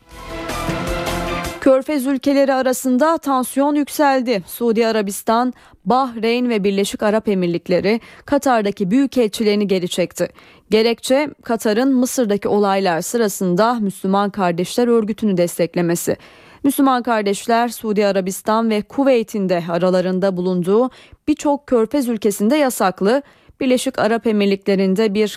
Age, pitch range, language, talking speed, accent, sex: 30-49, 195-255 Hz, Turkish, 95 wpm, native, female